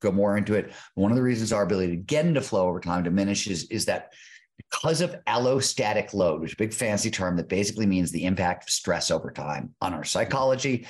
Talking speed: 225 wpm